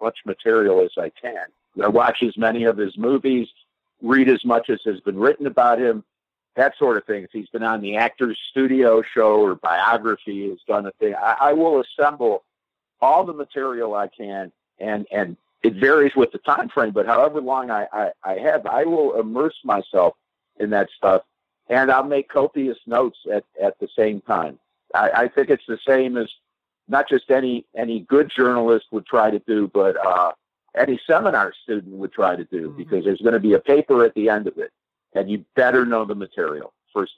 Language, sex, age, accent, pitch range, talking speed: English, male, 50-69, American, 115-170 Hz, 200 wpm